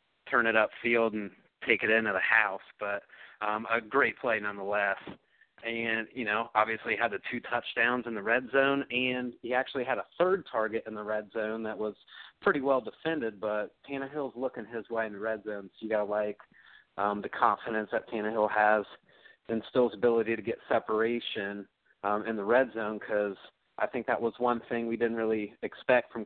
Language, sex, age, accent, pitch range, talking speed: English, male, 30-49, American, 105-120 Hz, 195 wpm